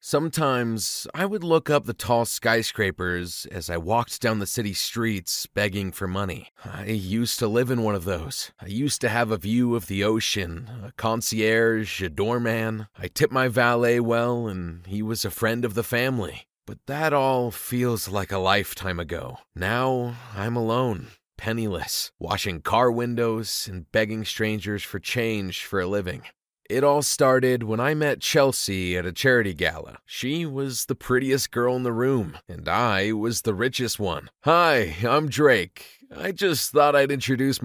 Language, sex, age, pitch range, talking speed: English, male, 30-49, 105-140 Hz, 170 wpm